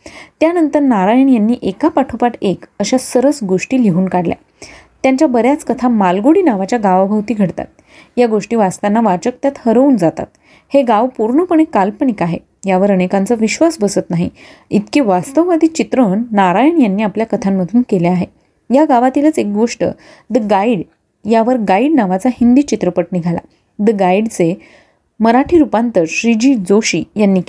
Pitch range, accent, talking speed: 195-260 Hz, native, 140 wpm